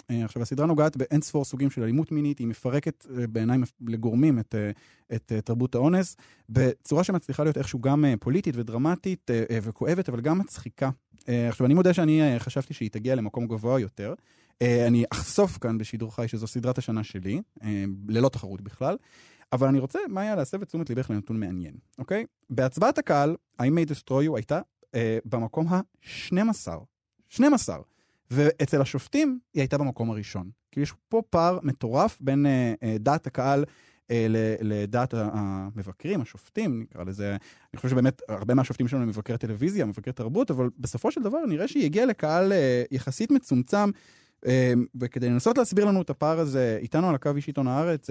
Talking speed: 170 wpm